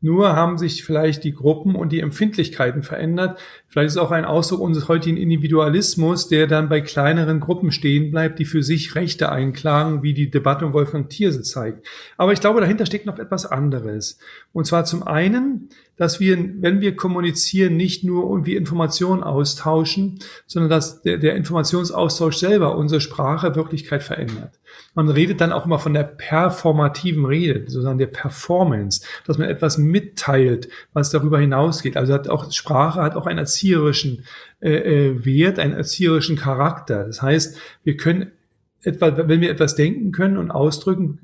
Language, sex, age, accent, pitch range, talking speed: German, male, 40-59, German, 150-180 Hz, 165 wpm